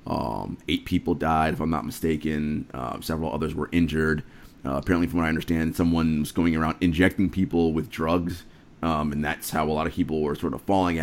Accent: American